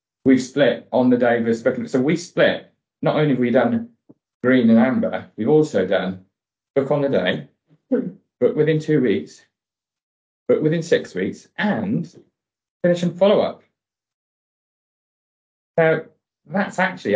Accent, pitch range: British, 115-165 Hz